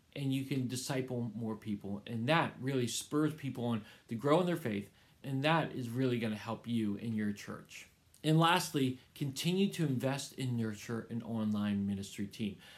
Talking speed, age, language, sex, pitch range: 185 wpm, 40-59, English, male, 120-155 Hz